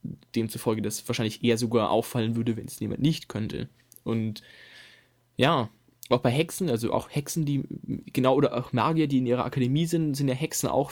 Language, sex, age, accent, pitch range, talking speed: German, male, 10-29, German, 115-135 Hz, 185 wpm